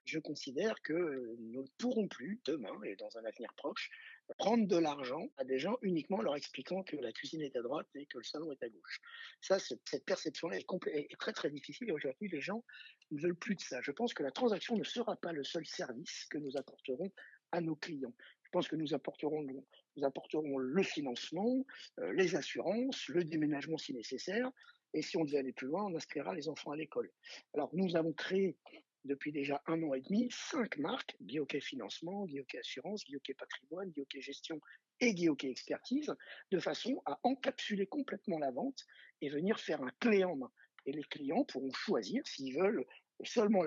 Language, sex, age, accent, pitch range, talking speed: French, male, 50-69, French, 150-240 Hz, 200 wpm